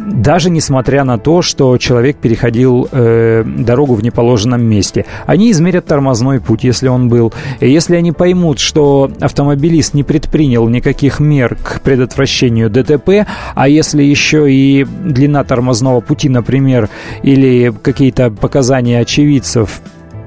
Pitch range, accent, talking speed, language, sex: 120-150 Hz, native, 125 wpm, Russian, male